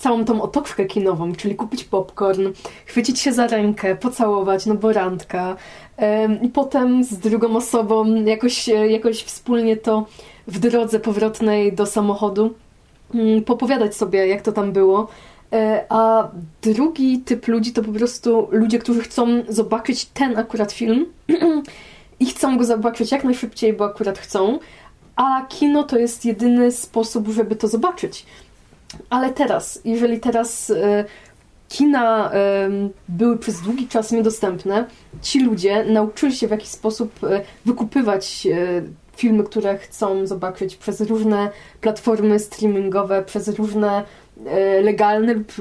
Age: 20-39